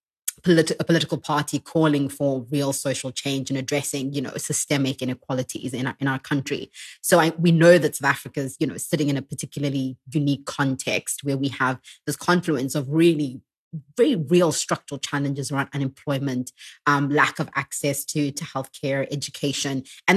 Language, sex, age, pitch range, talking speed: English, female, 20-39, 135-155 Hz, 165 wpm